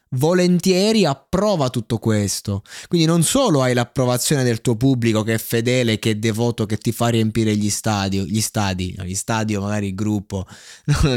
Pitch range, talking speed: 105-125 Hz, 175 wpm